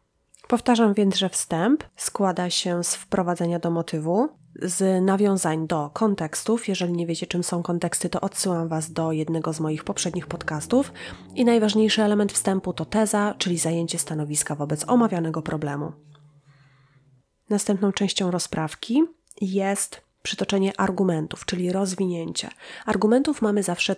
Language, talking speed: Polish, 130 wpm